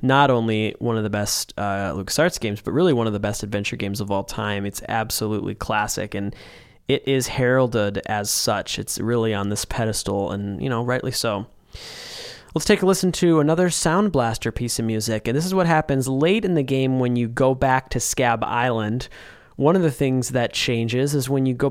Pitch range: 115-145 Hz